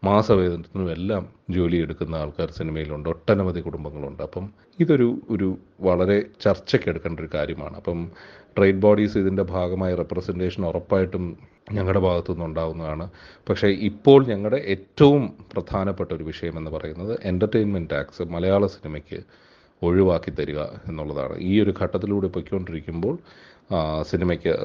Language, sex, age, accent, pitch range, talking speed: Malayalam, male, 30-49, native, 85-100 Hz, 110 wpm